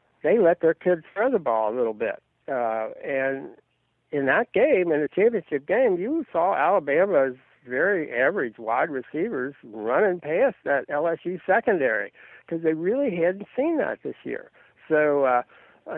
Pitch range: 115-155 Hz